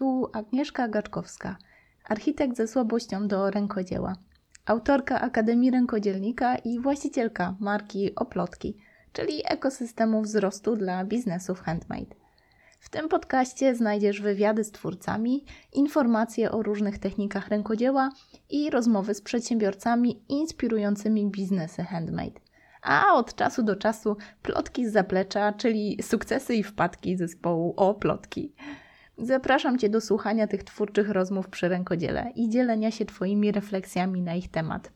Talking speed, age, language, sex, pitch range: 120 wpm, 20-39, Polish, female, 195-245 Hz